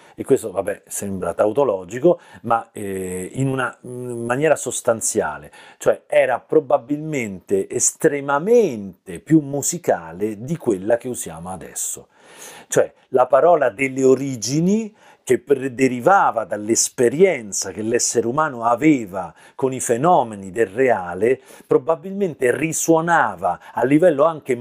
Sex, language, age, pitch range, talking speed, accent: male, Italian, 40-59, 115-160 Hz, 105 wpm, native